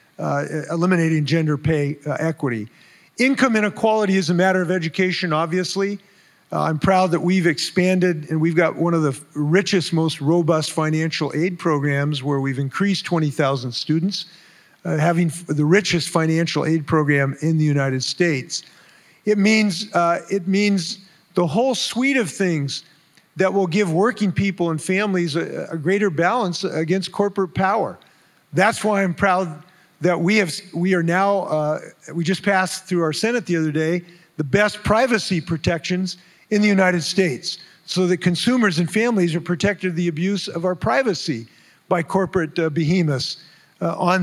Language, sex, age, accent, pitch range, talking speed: English, male, 50-69, American, 160-195 Hz, 160 wpm